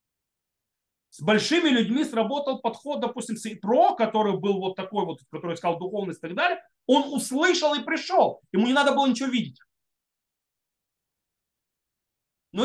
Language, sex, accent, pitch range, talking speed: Russian, male, native, 150-220 Hz, 140 wpm